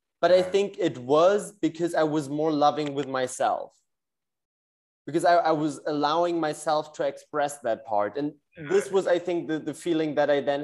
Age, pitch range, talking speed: 20-39, 130-160 Hz, 185 wpm